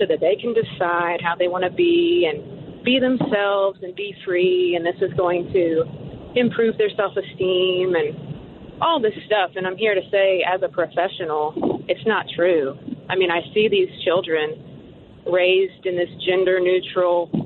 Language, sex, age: English, female, 30-49